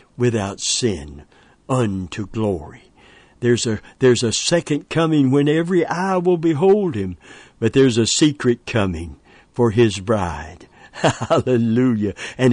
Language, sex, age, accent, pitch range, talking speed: English, male, 60-79, American, 110-145 Hz, 125 wpm